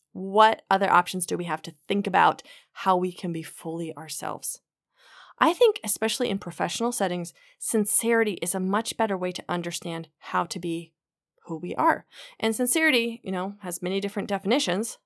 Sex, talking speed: female, 170 wpm